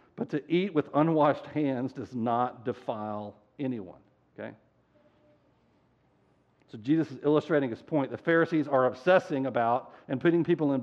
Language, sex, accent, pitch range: English, male, American, 130-165 Hz